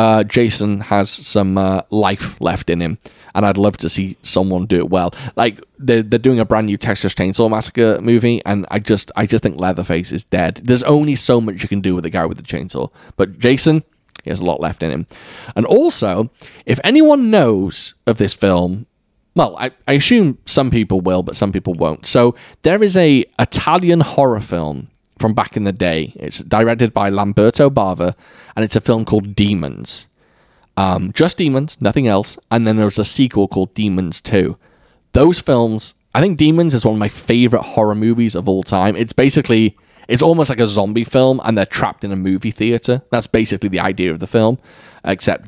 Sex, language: male, English